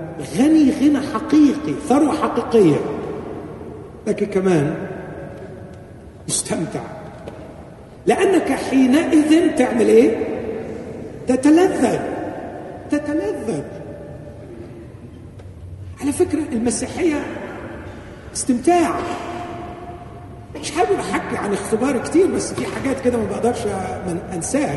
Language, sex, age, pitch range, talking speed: Arabic, male, 50-69, 155-225 Hz, 75 wpm